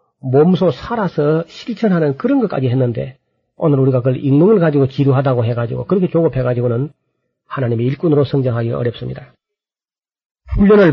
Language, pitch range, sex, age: Korean, 125-165 Hz, male, 40-59